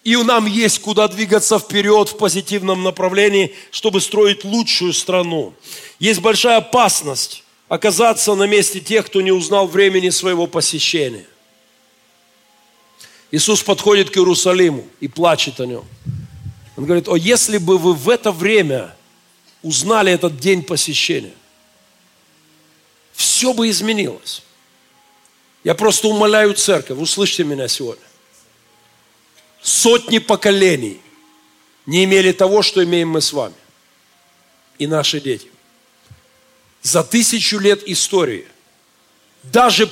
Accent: native